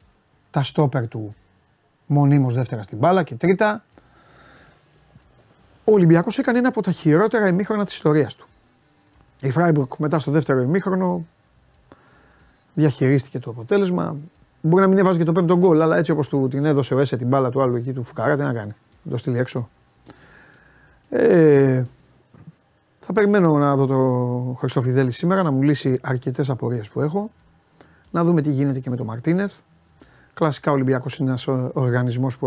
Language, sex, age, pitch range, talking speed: Greek, male, 30-49, 125-165 Hz, 160 wpm